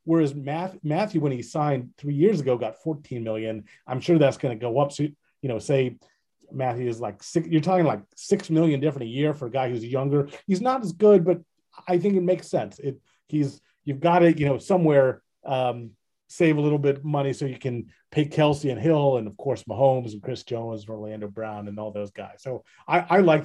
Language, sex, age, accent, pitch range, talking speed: English, male, 30-49, American, 125-155 Hz, 230 wpm